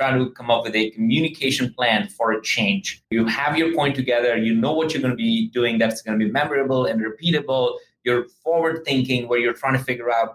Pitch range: 115-150 Hz